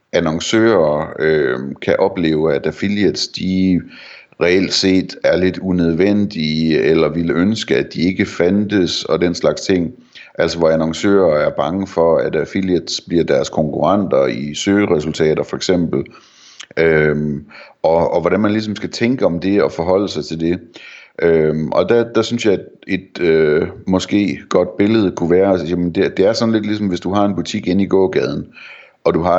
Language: Danish